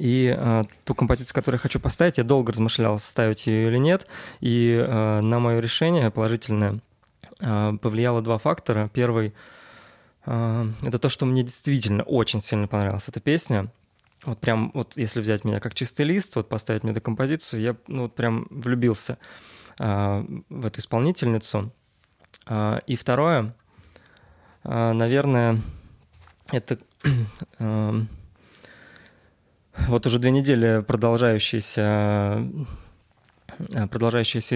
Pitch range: 110-130 Hz